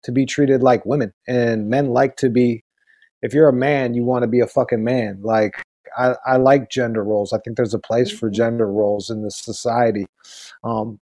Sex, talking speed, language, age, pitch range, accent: male, 210 wpm, English, 30-49, 115-140 Hz, American